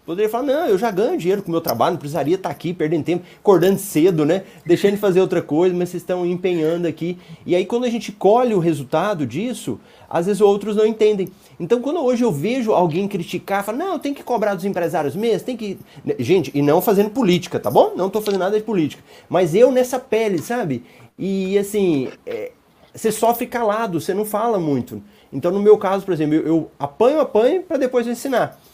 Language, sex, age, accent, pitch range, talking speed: Portuguese, male, 30-49, Brazilian, 155-215 Hz, 215 wpm